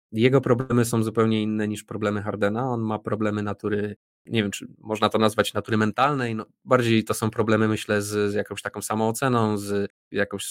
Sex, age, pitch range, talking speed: male, 20-39, 105-125 Hz, 185 wpm